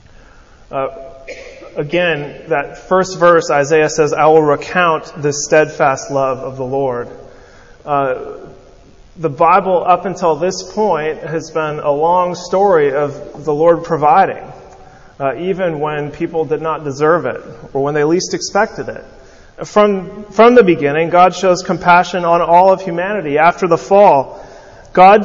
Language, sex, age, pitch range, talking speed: English, male, 30-49, 155-195 Hz, 145 wpm